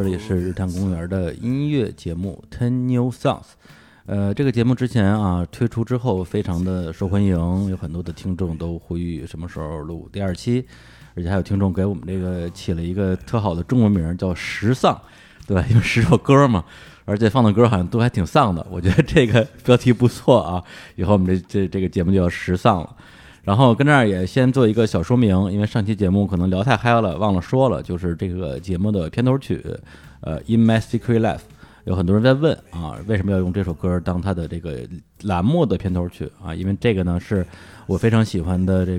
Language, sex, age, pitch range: Chinese, male, 20-39, 90-115 Hz